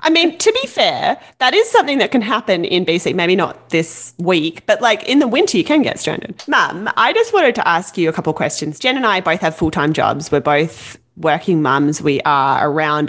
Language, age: English, 20-39